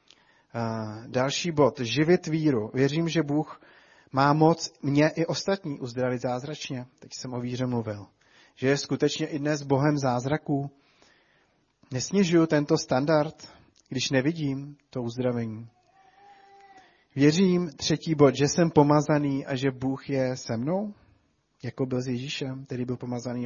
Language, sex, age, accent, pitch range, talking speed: Czech, male, 30-49, native, 125-150 Hz, 135 wpm